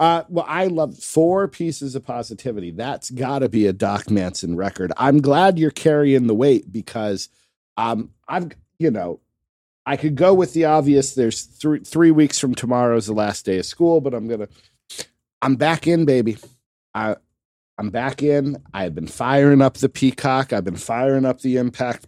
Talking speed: 190 wpm